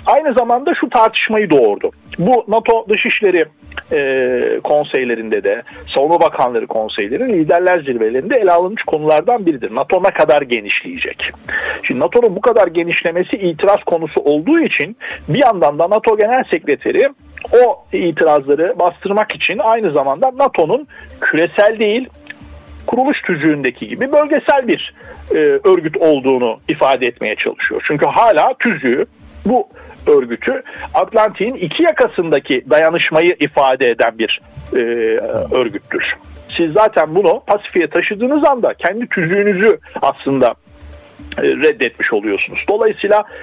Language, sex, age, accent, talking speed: Turkish, male, 50-69, native, 115 wpm